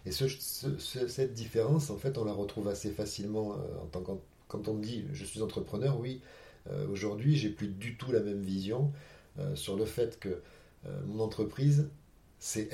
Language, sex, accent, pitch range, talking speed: French, male, French, 95-115 Hz, 185 wpm